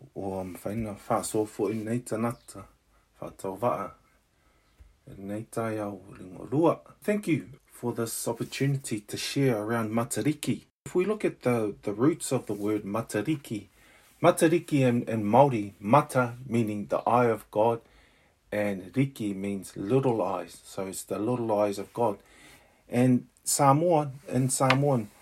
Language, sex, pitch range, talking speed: English, male, 105-130 Hz, 110 wpm